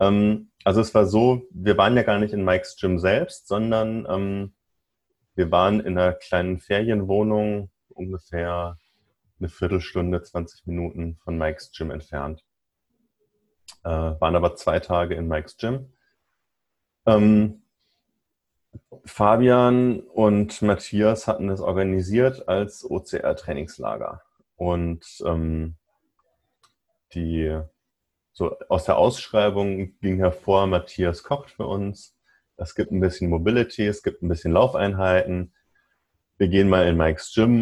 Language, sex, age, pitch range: German, male, 30-49, 85-105 Hz